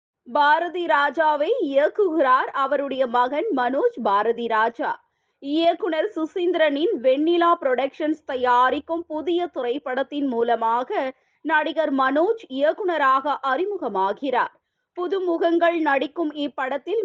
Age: 20-39